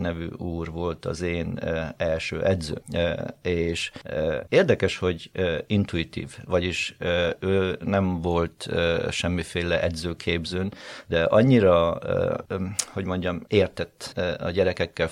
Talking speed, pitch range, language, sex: 95 wpm, 85-100 Hz, Hungarian, male